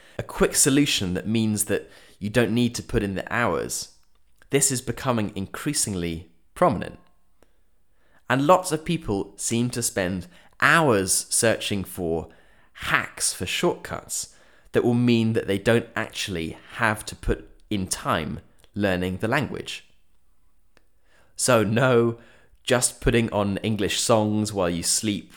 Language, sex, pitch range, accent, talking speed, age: English, male, 90-120 Hz, British, 135 wpm, 20-39